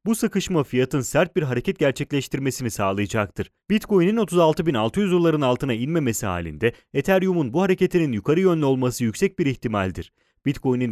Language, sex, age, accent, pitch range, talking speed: Italian, male, 30-49, Turkish, 115-175 Hz, 130 wpm